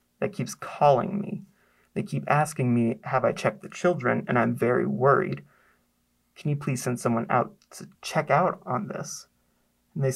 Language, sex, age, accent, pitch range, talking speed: English, male, 30-49, American, 125-175 Hz, 175 wpm